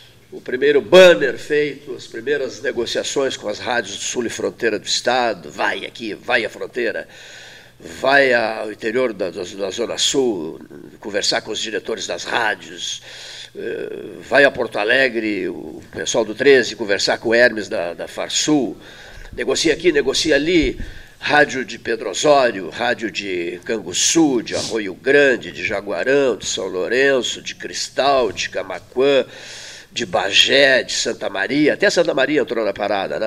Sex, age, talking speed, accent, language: male, 50-69, 155 wpm, Brazilian, Portuguese